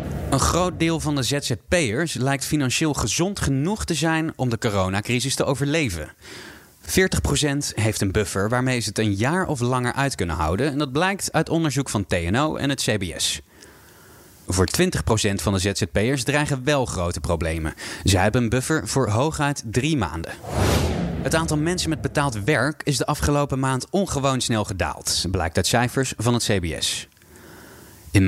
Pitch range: 100-145 Hz